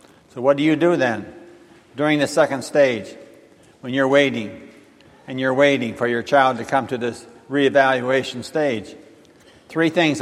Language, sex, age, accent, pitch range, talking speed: English, male, 60-79, American, 125-150 Hz, 160 wpm